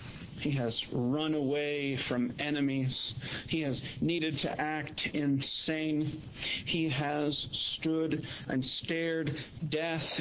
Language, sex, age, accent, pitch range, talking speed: English, male, 50-69, American, 125-155 Hz, 105 wpm